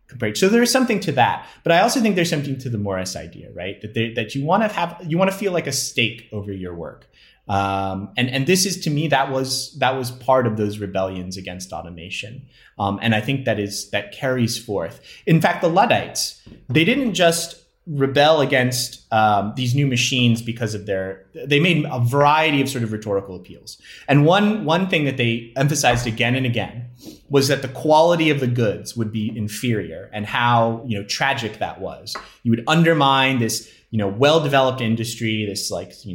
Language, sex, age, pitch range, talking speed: English, male, 30-49, 110-145 Hz, 205 wpm